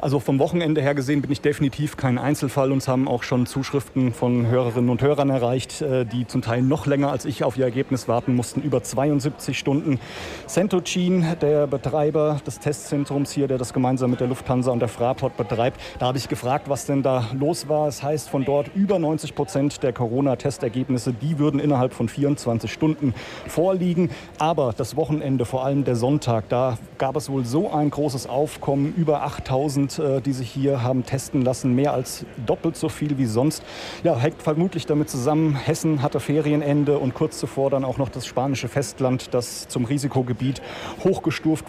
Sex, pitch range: male, 125-145 Hz